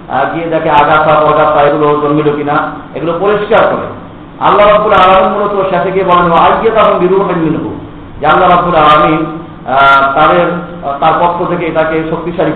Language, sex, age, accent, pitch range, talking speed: Bengali, male, 50-69, native, 155-190 Hz, 65 wpm